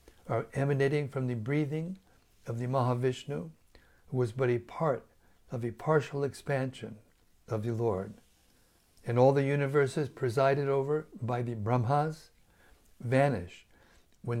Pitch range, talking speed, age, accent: 120-145 Hz, 130 wpm, 60-79, American